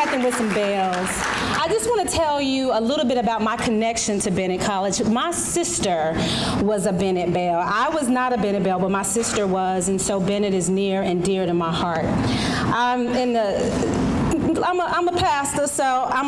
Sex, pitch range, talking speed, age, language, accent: female, 195-280 Hz, 190 wpm, 40-59, English, American